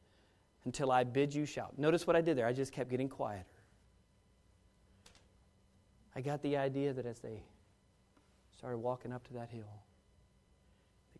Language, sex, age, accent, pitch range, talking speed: English, male, 40-59, American, 100-130 Hz, 155 wpm